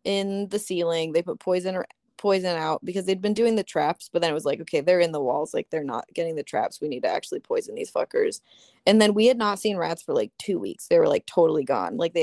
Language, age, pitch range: English, 20-39, 175-255 Hz